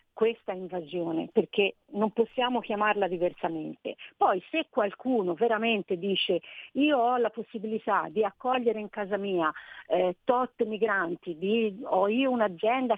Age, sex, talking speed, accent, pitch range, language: 40-59, female, 125 wpm, native, 185-225 Hz, Italian